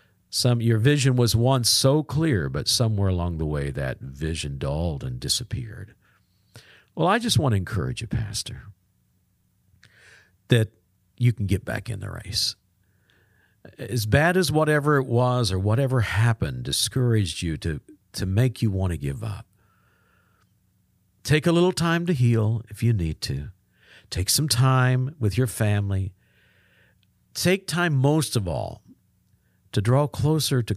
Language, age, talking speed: English, 50-69, 150 wpm